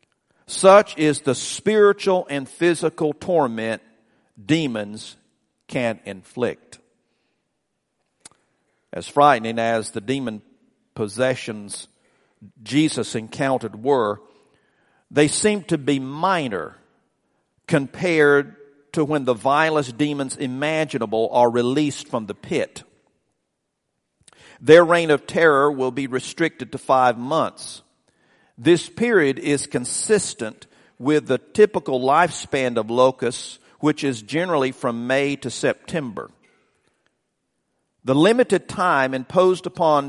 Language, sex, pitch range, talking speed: English, male, 125-155 Hz, 100 wpm